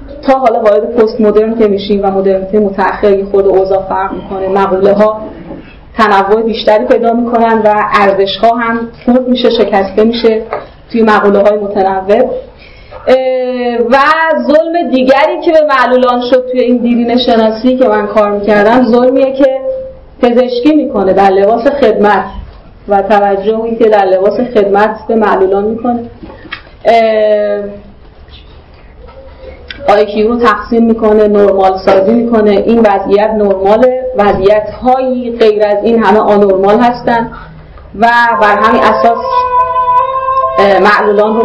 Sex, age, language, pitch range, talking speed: female, 30-49, Persian, 200-245 Hz, 120 wpm